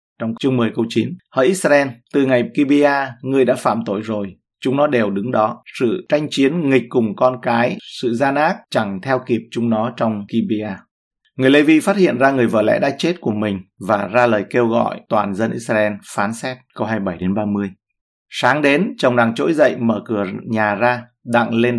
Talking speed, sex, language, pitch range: 210 wpm, male, Vietnamese, 110-130 Hz